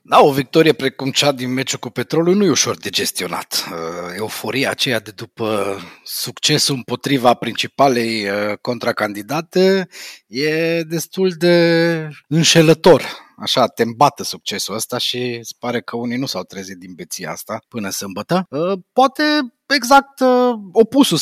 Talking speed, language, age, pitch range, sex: 130 wpm, Romanian, 30-49, 130-200 Hz, male